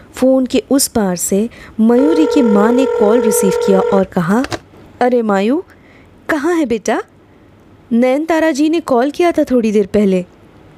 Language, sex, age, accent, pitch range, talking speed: Hindi, female, 20-39, native, 210-290 Hz, 160 wpm